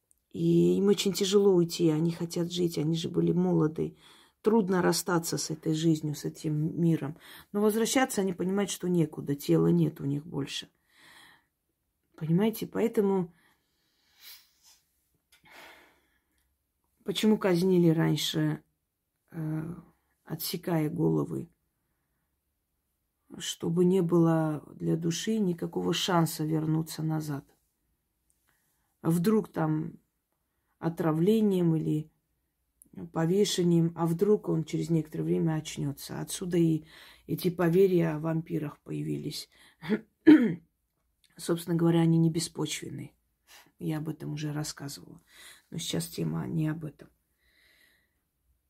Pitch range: 140-175 Hz